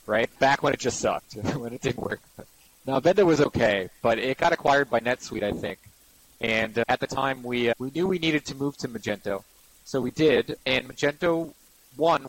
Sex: male